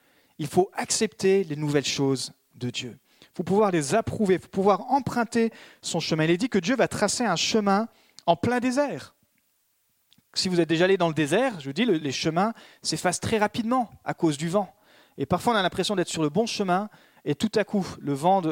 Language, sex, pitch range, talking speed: French, male, 150-210 Hz, 215 wpm